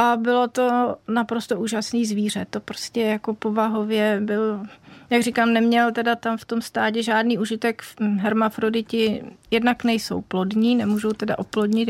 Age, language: 30-49, Czech